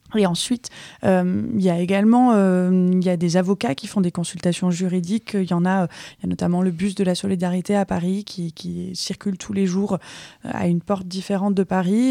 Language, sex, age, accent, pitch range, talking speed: French, female, 20-39, French, 185-215 Hz, 225 wpm